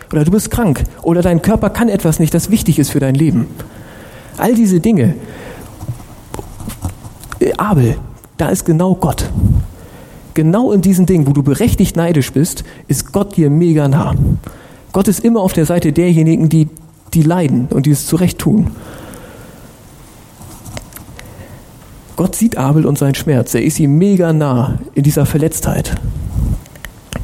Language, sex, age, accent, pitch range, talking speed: German, male, 40-59, German, 145-185 Hz, 150 wpm